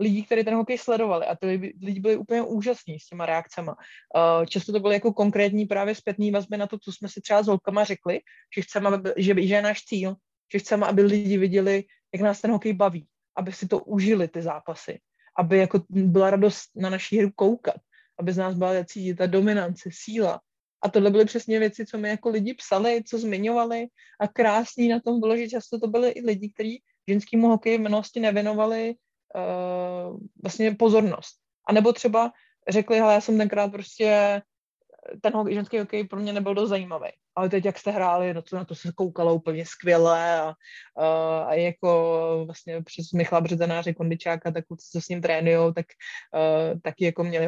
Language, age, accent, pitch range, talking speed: Czech, 20-39, native, 170-215 Hz, 185 wpm